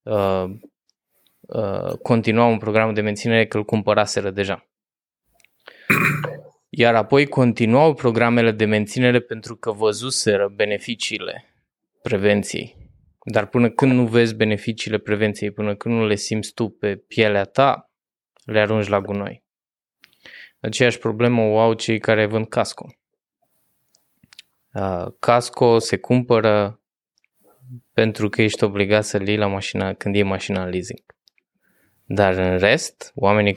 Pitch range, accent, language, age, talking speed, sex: 105-120 Hz, native, Romanian, 20-39, 125 wpm, male